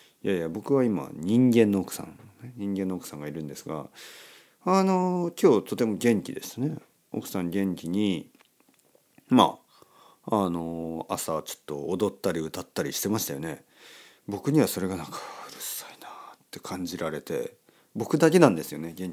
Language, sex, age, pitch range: Japanese, male, 40-59, 90-140 Hz